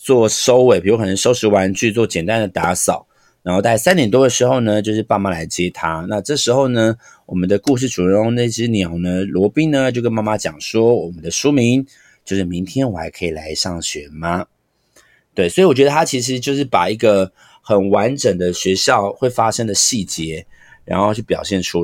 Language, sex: Chinese, male